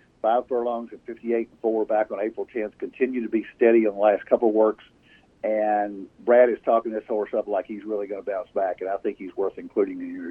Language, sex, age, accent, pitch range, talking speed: English, male, 50-69, American, 110-130 Hz, 240 wpm